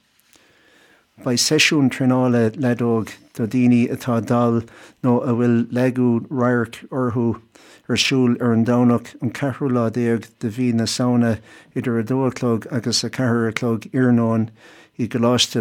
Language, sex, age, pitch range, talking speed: English, male, 60-79, 115-125 Hz, 120 wpm